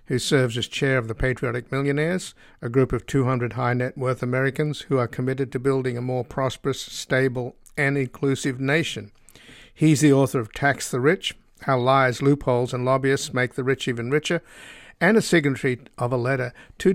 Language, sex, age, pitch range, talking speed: English, male, 50-69, 125-140 Hz, 175 wpm